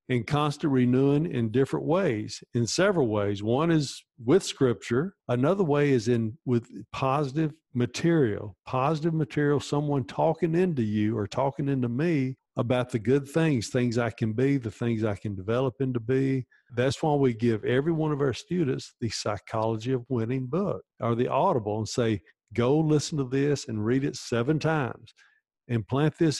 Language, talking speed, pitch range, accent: English, 175 wpm, 115-150 Hz, American